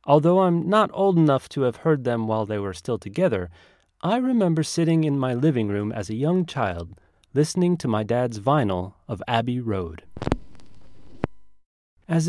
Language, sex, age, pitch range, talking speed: English, male, 30-49, 105-160 Hz, 165 wpm